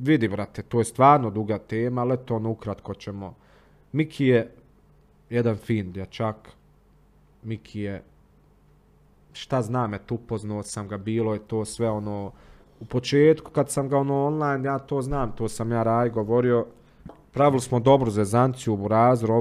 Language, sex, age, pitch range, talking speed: Croatian, male, 30-49, 105-120 Hz, 160 wpm